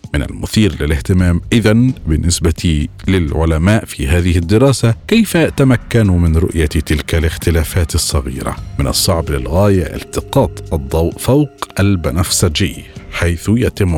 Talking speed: 105 wpm